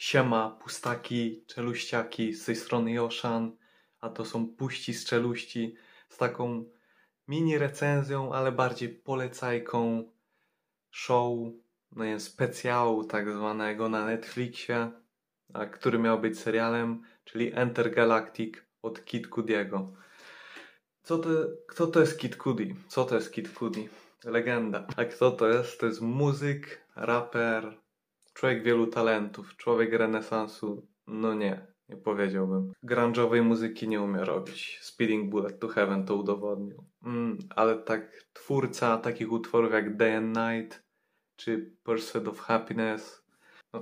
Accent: native